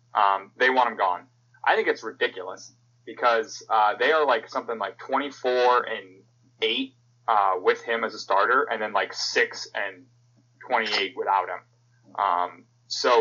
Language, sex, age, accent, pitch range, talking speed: English, male, 20-39, American, 115-175 Hz, 160 wpm